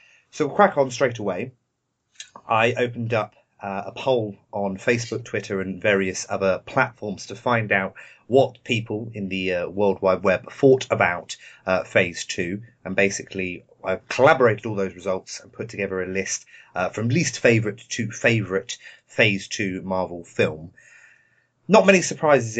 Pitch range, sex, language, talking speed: 95-130 Hz, male, English, 160 wpm